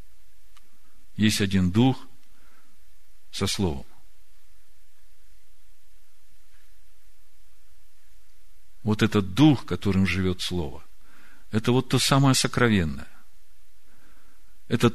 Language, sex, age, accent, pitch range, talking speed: Russian, male, 50-69, native, 80-100 Hz, 70 wpm